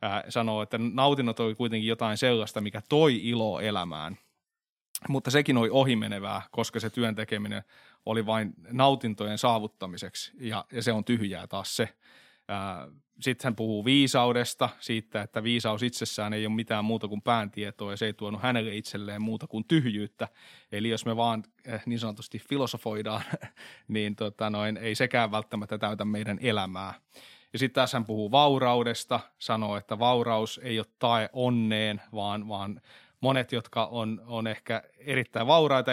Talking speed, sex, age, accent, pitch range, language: 150 wpm, male, 20-39, native, 105-120 Hz, Finnish